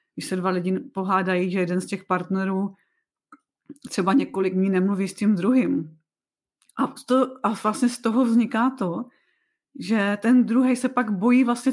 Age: 30-49